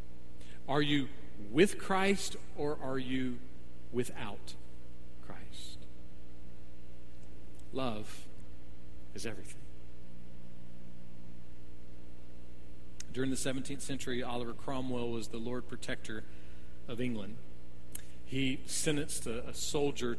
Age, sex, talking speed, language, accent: 40-59, male, 85 wpm, English, American